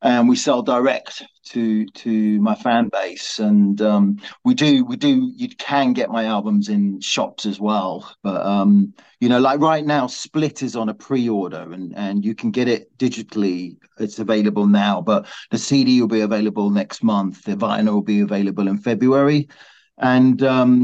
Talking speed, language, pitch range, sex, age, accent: 180 wpm, English, 105-130 Hz, male, 40-59, British